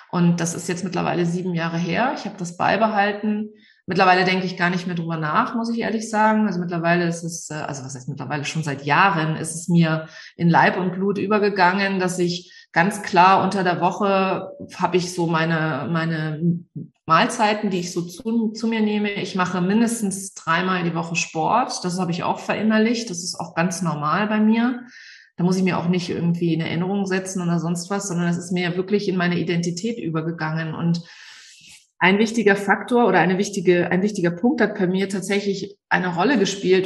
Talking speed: 195 wpm